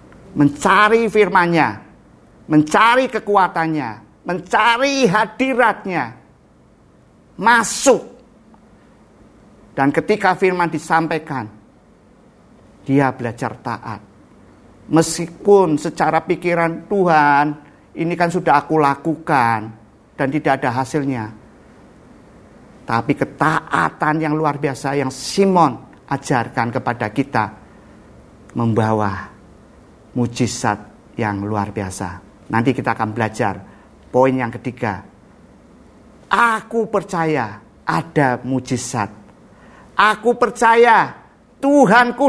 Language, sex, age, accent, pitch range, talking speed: Indonesian, male, 50-69, native, 125-175 Hz, 80 wpm